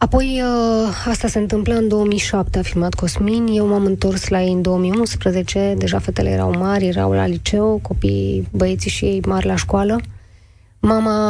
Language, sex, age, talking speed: Romanian, female, 20-39, 170 wpm